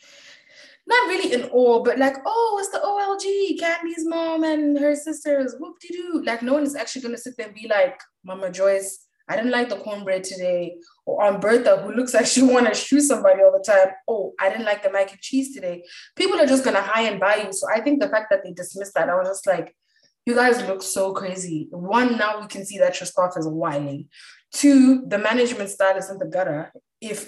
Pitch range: 195-280 Hz